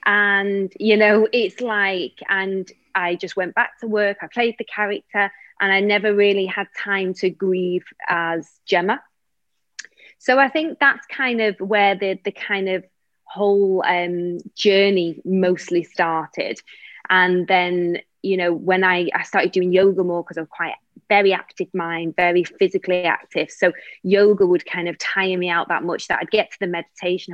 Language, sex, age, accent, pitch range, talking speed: English, female, 20-39, British, 175-215 Hz, 175 wpm